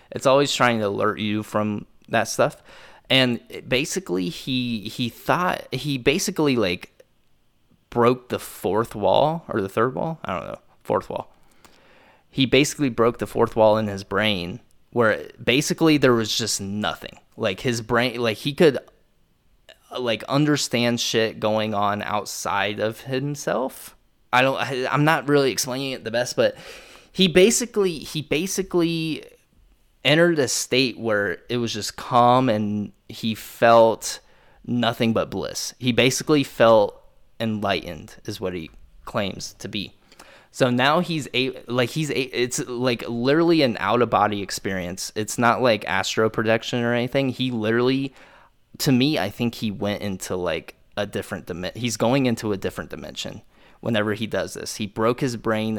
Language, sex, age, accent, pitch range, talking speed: English, male, 20-39, American, 105-135 Hz, 155 wpm